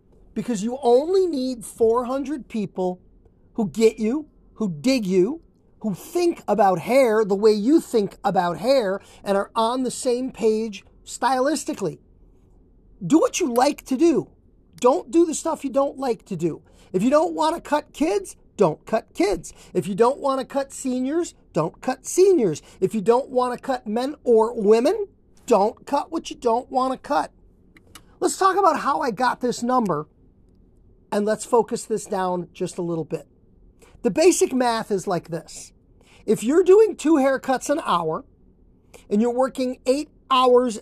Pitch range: 210-275 Hz